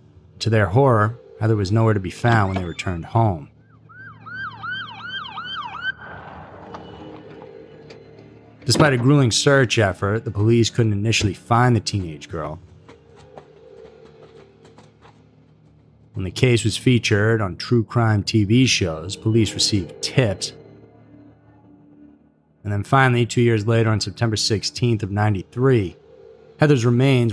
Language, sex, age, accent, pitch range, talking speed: English, male, 30-49, American, 100-125 Hz, 115 wpm